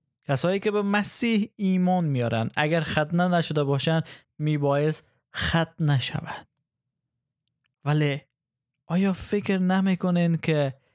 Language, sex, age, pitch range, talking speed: Persian, male, 20-39, 140-175 Hz, 100 wpm